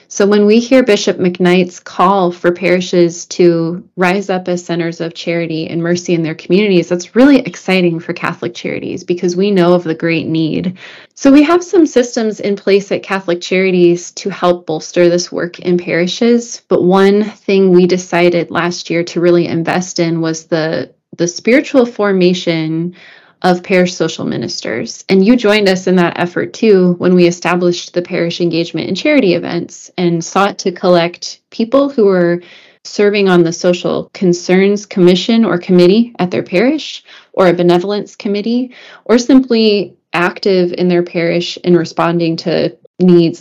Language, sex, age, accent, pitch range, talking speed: English, female, 20-39, American, 175-200 Hz, 165 wpm